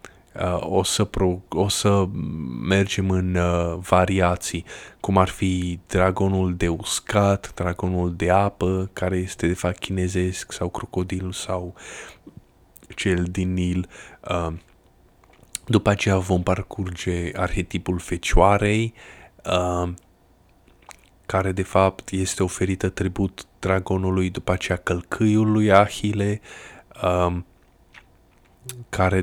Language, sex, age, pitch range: Romanian, male, 20-39, 90-100 Hz